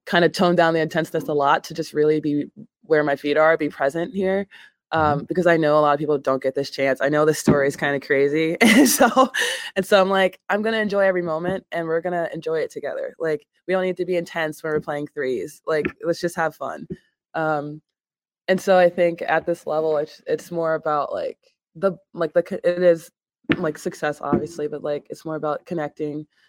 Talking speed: 225 wpm